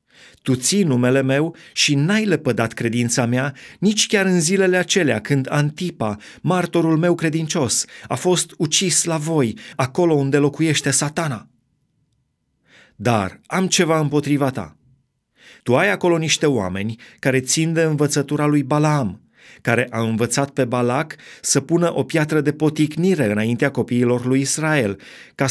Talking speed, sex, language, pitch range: 140 wpm, male, Romanian, 125-160 Hz